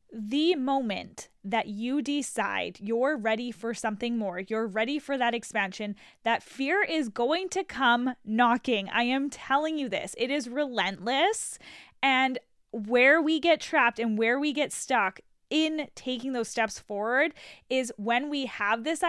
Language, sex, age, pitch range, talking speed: English, female, 10-29, 225-280 Hz, 155 wpm